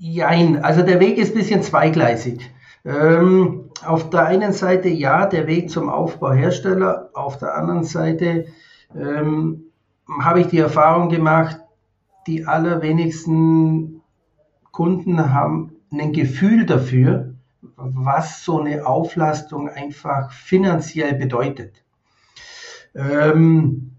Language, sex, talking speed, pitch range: German, male, 110 wpm, 145-180 Hz